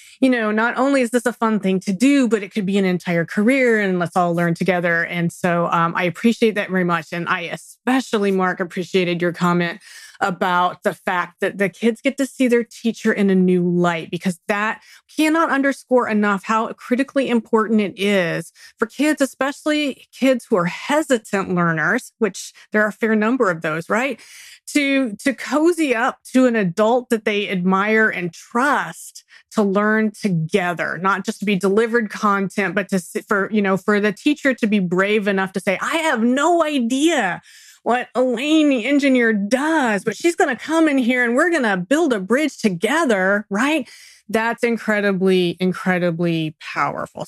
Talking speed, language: 180 wpm, English